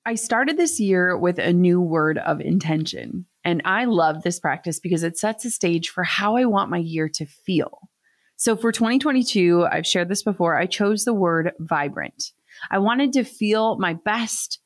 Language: English